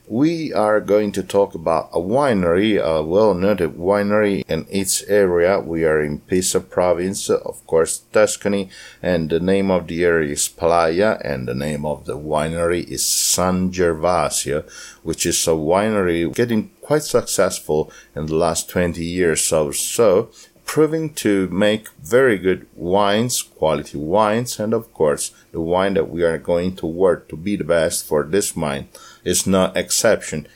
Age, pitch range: 50-69, 80-105 Hz